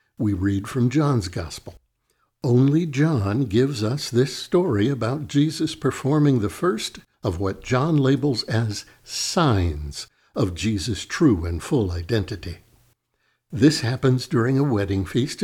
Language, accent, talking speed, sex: English, American, 130 wpm, male